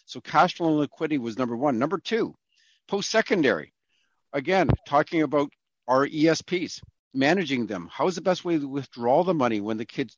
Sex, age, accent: male, 50-69, American